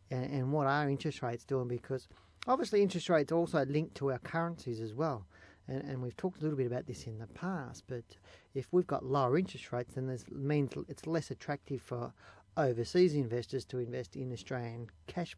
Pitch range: 115-140 Hz